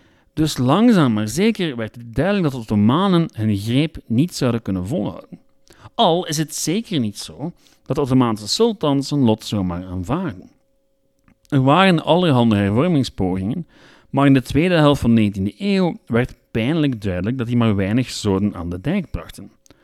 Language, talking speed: Dutch, 165 wpm